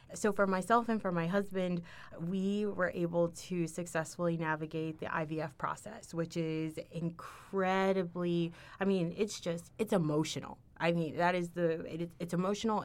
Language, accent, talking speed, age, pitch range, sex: English, American, 150 wpm, 20-39, 170-210 Hz, female